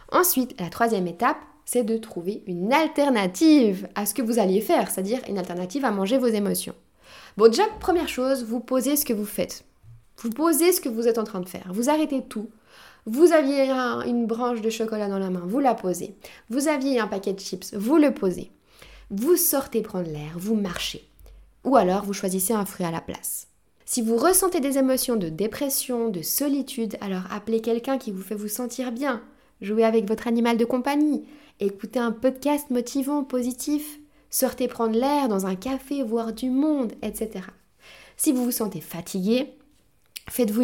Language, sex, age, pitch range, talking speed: French, female, 20-39, 195-265 Hz, 185 wpm